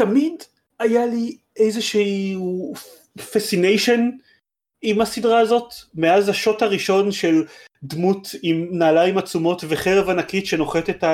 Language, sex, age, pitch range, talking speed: Hebrew, male, 30-49, 145-205 Hz, 110 wpm